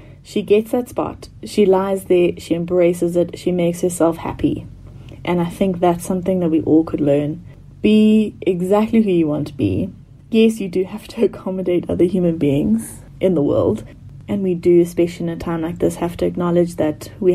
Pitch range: 150-195 Hz